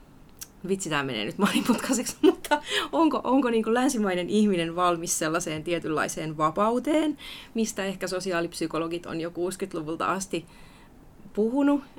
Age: 30-49